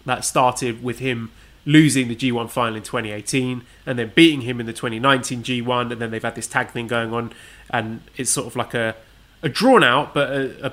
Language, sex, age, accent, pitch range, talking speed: English, male, 20-39, British, 115-140 Hz, 220 wpm